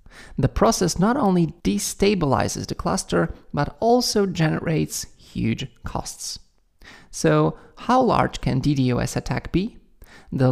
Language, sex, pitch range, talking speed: English, male, 125-180 Hz, 115 wpm